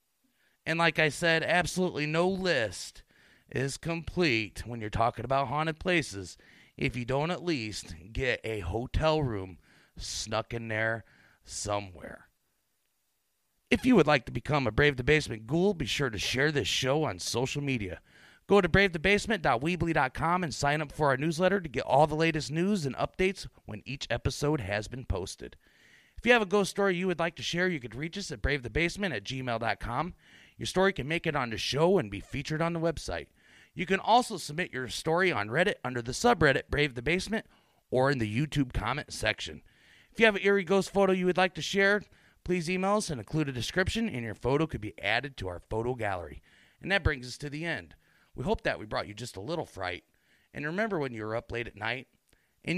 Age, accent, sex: 30-49, American, male